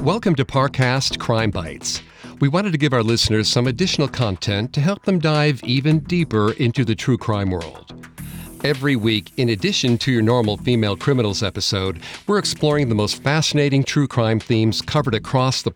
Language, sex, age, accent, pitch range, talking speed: English, male, 50-69, American, 110-145 Hz, 175 wpm